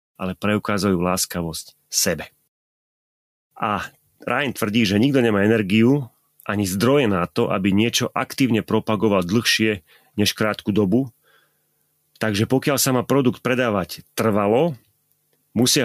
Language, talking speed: Slovak, 115 wpm